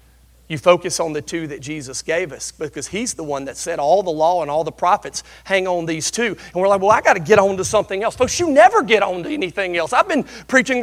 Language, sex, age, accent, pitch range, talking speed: English, male, 40-59, American, 130-185 Hz, 270 wpm